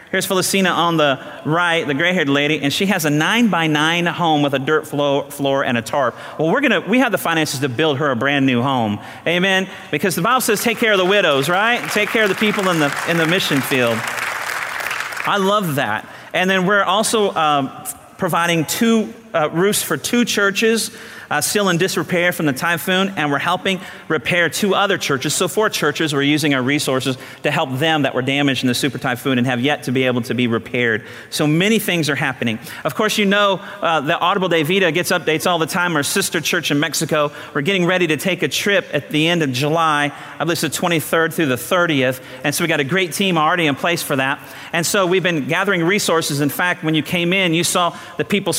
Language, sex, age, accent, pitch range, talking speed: English, male, 40-59, American, 145-185 Hz, 225 wpm